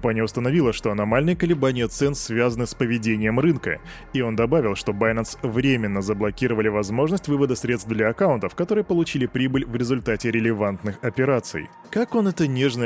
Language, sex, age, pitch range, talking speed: Russian, male, 20-39, 115-155 Hz, 150 wpm